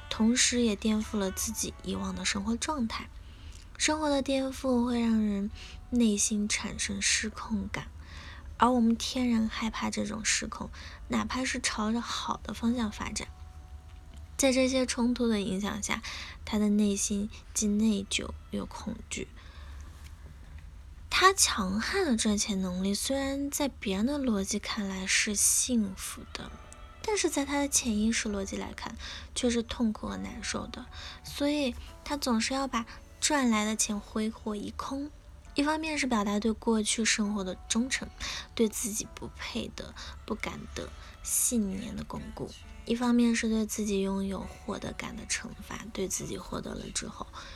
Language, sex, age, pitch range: Chinese, female, 10-29, 190-240 Hz